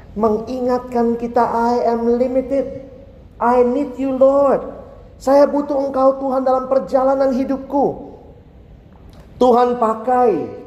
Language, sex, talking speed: Indonesian, male, 100 wpm